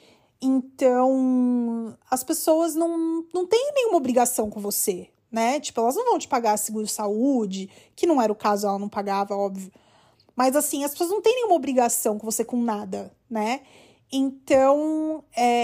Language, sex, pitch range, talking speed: Portuguese, female, 215-295 Hz, 165 wpm